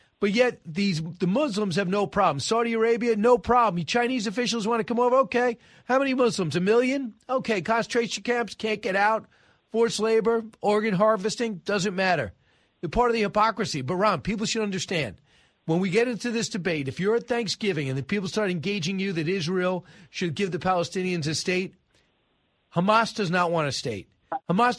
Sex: male